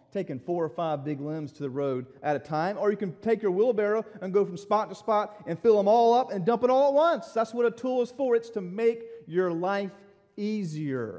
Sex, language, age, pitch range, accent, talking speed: male, English, 40-59, 120-175 Hz, American, 250 wpm